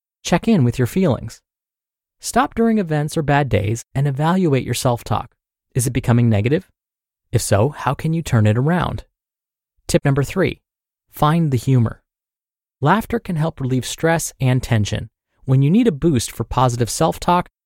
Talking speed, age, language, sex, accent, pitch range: 165 wpm, 30-49, English, male, American, 120-175 Hz